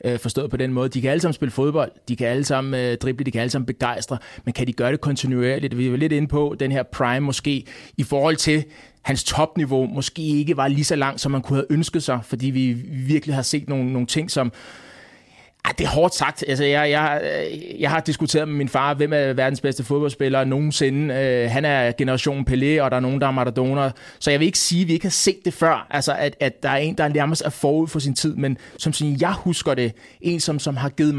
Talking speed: 250 wpm